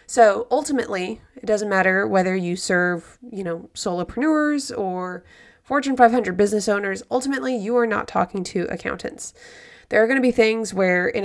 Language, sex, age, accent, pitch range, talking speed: English, female, 20-39, American, 190-240 Hz, 165 wpm